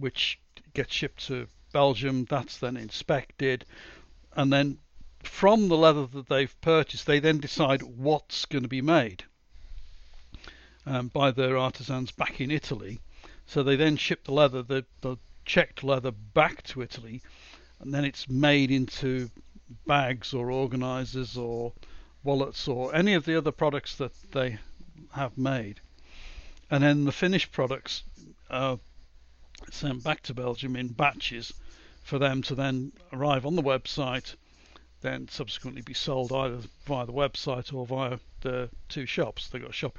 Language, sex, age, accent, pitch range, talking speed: English, male, 60-79, British, 120-145 Hz, 150 wpm